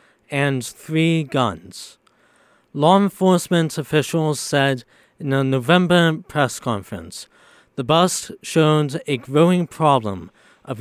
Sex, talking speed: male, 105 wpm